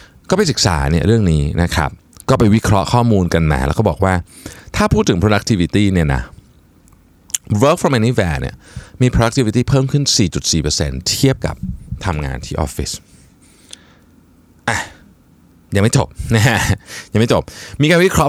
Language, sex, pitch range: Thai, male, 85-120 Hz